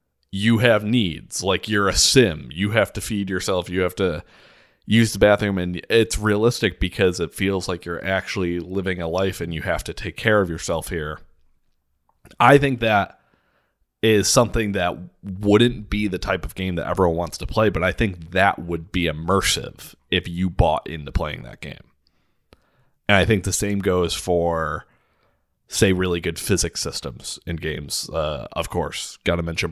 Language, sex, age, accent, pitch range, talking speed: English, male, 30-49, American, 85-105 Hz, 180 wpm